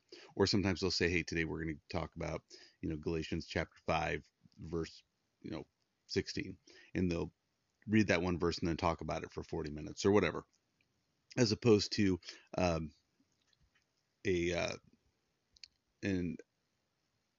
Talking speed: 150 wpm